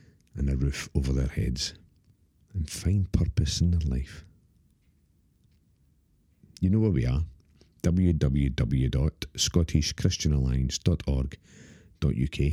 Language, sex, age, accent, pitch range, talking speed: English, male, 40-59, British, 70-90 Hz, 85 wpm